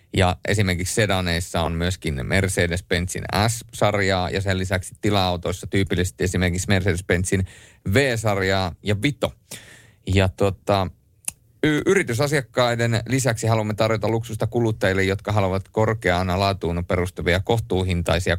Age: 30-49